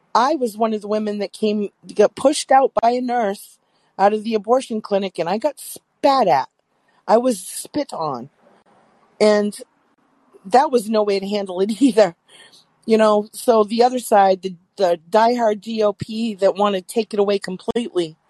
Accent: American